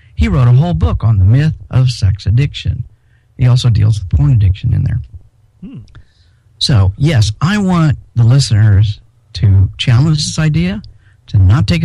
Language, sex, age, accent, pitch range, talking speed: English, male, 50-69, American, 105-145 Hz, 160 wpm